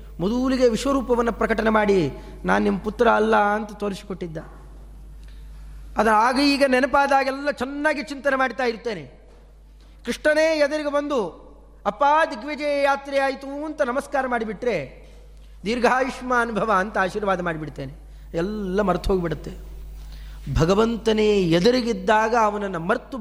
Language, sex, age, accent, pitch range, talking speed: Kannada, male, 20-39, native, 180-250 Hz, 105 wpm